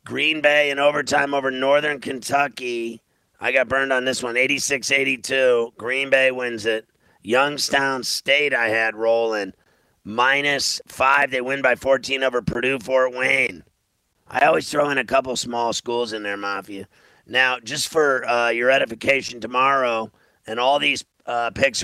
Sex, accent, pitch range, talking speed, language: male, American, 120-140 Hz, 150 wpm, English